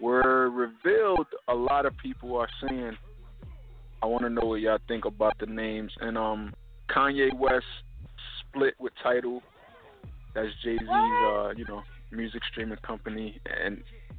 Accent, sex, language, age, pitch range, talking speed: American, male, English, 20-39, 110-125 Hz, 145 wpm